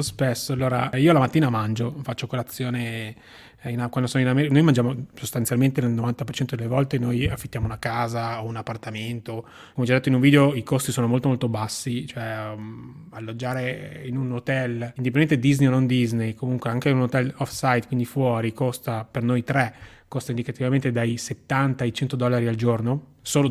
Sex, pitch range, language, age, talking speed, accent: male, 115-140 Hz, Italian, 20-39, 185 wpm, native